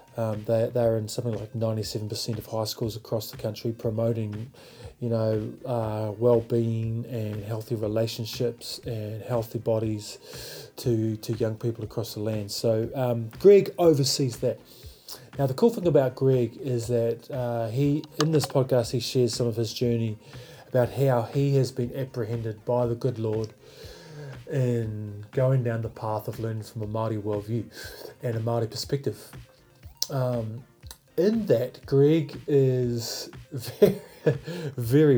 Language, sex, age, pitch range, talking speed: English, male, 20-39, 115-130 Hz, 145 wpm